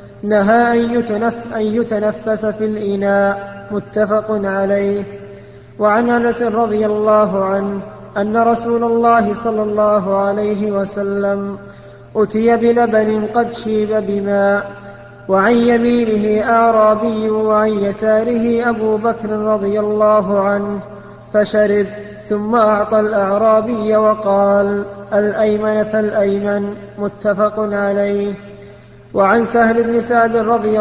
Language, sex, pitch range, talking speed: Arabic, male, 200-220 Hz, 95 wpm